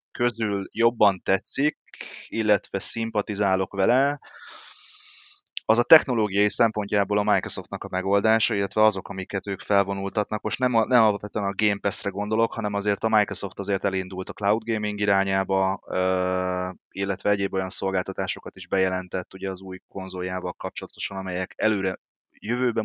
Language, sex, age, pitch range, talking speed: Hungarian, male, 20-39, 95-105 Hz, 130 wpm